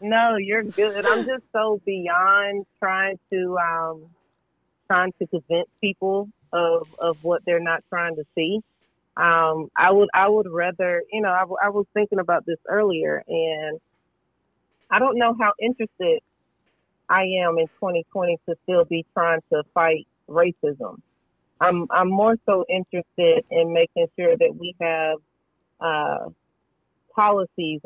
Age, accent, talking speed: 40-59, American, 145 wpm